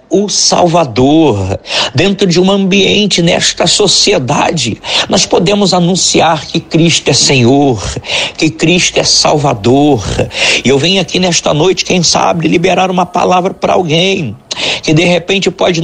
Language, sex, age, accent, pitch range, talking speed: Portuguese, male, 60-79, Brazilian, 150-185 Hz, 135 wpm